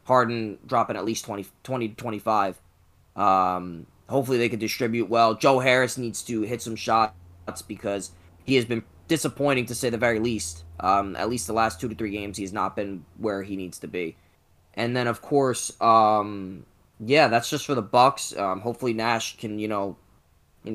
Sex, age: male, 20-39